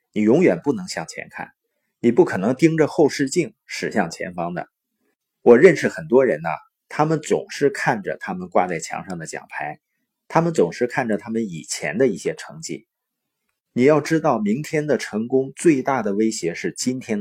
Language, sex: Chinese, male